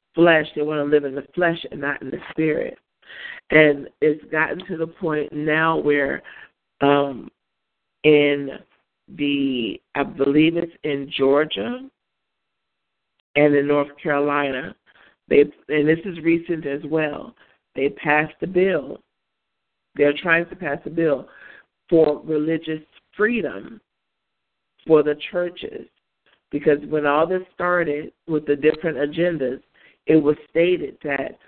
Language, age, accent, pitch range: English, 50-69, American, 145-165 Hz